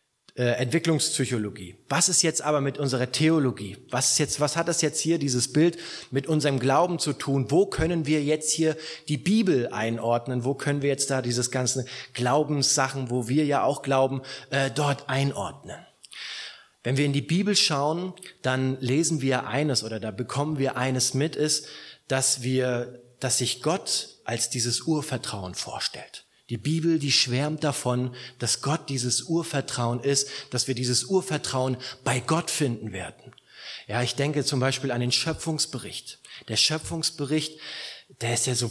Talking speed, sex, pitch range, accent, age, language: 165 wpm, male, 125-150 Hz, German, 30-49, German